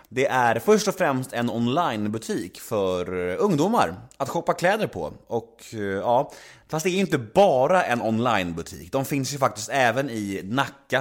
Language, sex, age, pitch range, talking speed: Swedish, male, 30-49, 105-160 Hz, 160 wpm